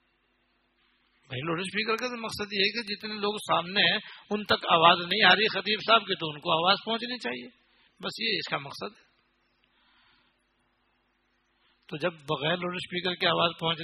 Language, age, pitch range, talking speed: Urdu, 60-79, 145-190 Hz, 180 wpm